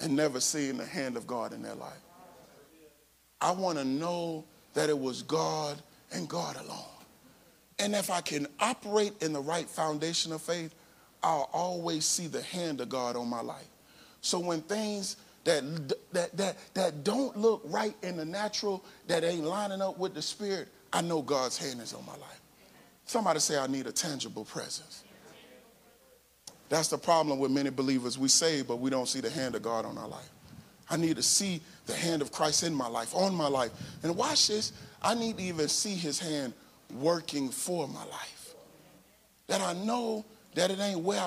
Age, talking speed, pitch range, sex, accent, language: 40-59, 190 wpm, 150-205 Hz, male, American, English